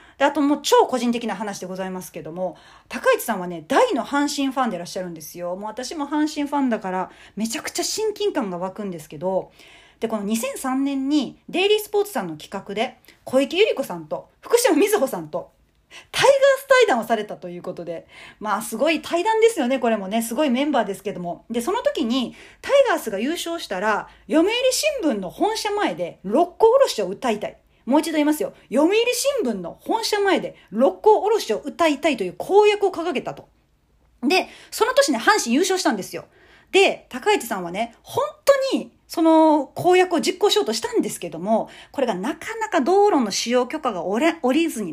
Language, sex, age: Japanese, female, 40-59